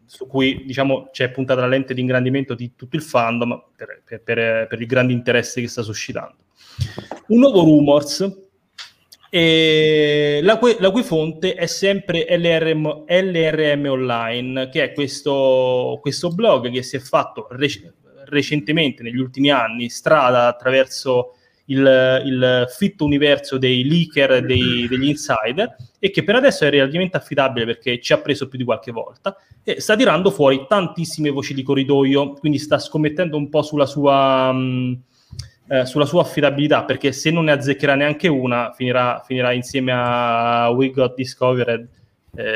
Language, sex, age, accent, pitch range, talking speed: Italian, male, 30-49, native, 125-155 Hz, 155 wpm